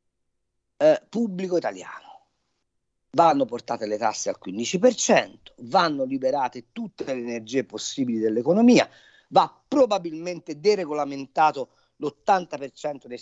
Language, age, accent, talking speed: Italian, 40-59, native, 90 wpm